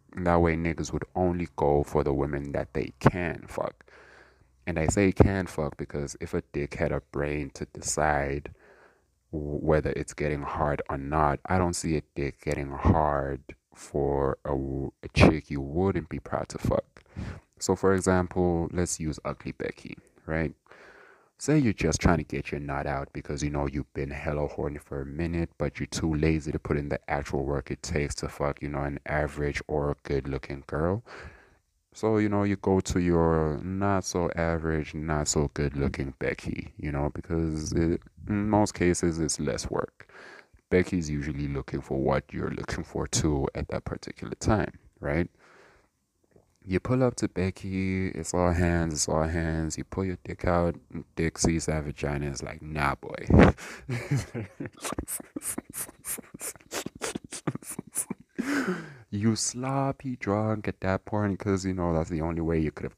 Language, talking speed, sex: English, 170 wpm, male